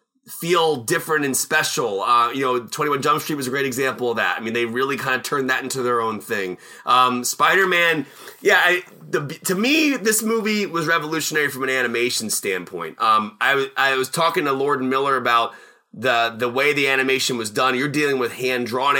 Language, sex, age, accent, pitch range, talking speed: English, male, 30-49, American, 130-165 Hz, 200 wpm